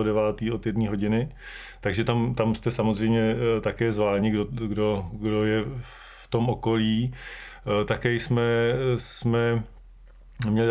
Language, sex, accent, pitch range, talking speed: Czech, male, native, 115-125 Hz, 125 wpm